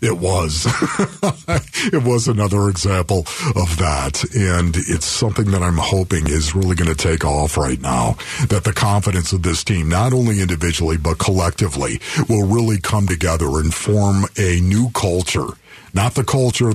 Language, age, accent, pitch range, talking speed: English, 50-69, American, 90-110 Hz, 160 wpm